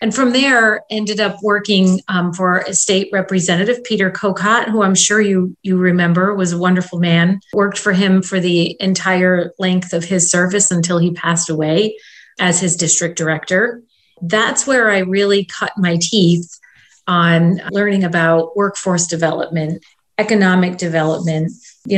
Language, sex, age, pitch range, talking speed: English, female, 40-59, 170-200 Hz, 155 wpm